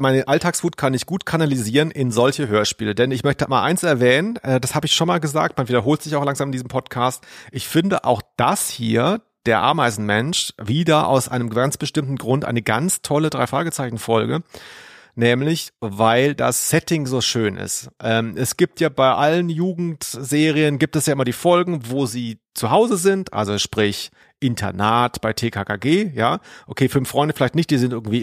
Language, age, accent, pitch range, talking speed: German, 30-49, German, 120-155 Hz, 185 wpm